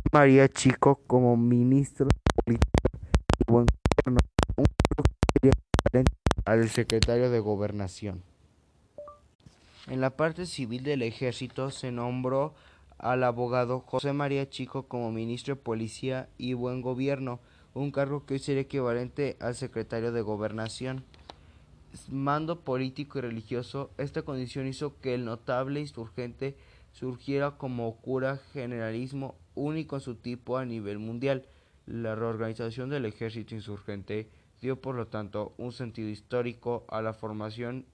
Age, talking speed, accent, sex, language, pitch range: 20-39, 130 wpm, Mexican, male, Spanish, 110-130 Hz